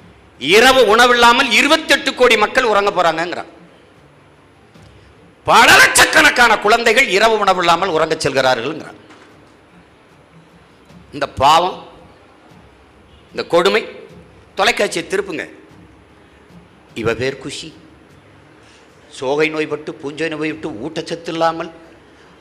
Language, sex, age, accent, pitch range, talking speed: Tamil, male, 50-69, native, 190-270 Hz, 80 wpm